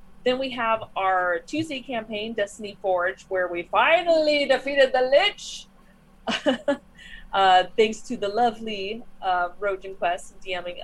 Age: 30-49